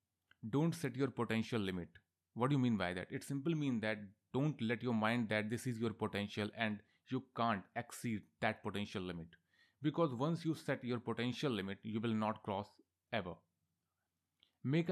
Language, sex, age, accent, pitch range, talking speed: Hindi, male, 30-49, native, 105-125 Hz, 175 wpm